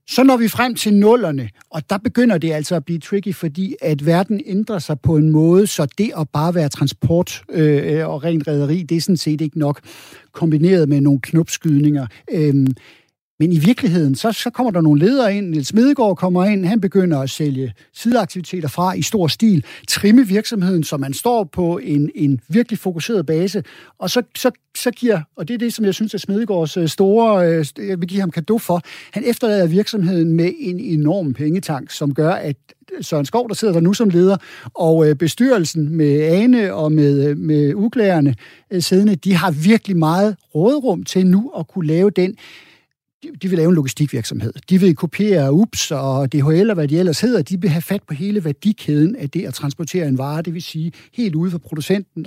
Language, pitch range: Danish, 155-200 Hz